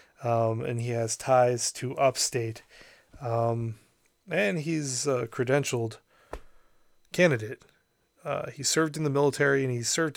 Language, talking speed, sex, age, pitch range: English, 130 wpm, male, 20-39, 115-140 Hz